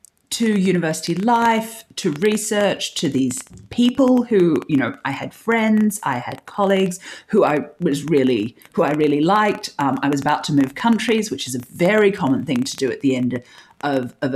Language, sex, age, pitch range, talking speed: English, female, 40-59, 140-210 Hz, 190 wpm